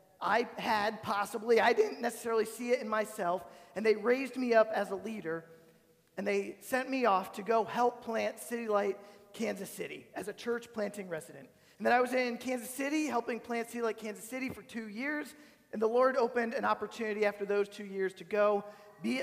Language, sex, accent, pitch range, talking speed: English, male, American, 205-250 Hz, 205 wpm